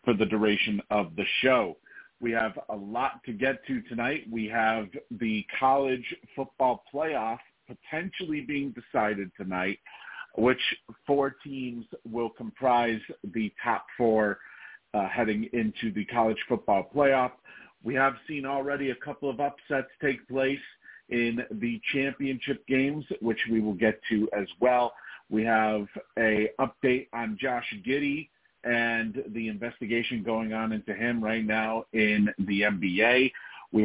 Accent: American